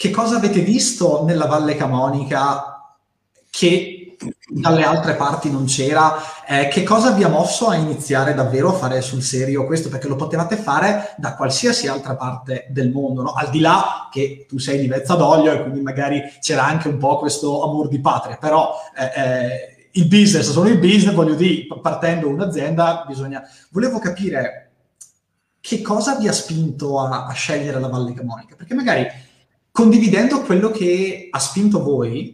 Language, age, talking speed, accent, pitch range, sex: Italian, 20-39, 170 wpm, native, 135-185 Hz, male